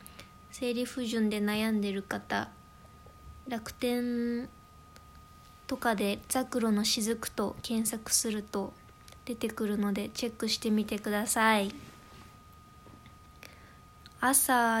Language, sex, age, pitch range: Japanese, female, 20-39, 205-235 Hz